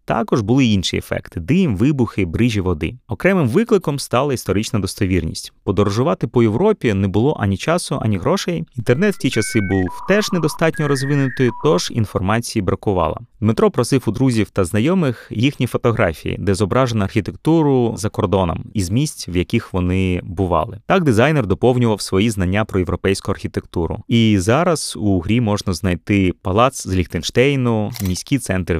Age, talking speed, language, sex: 30-49, 150 wpm, Ukrainian, male